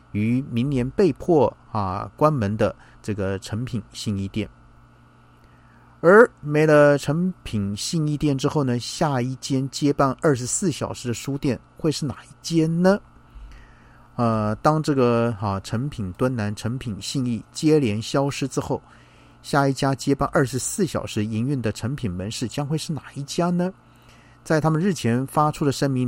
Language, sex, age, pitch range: Chinese, male, 50-69, 105-145 Hz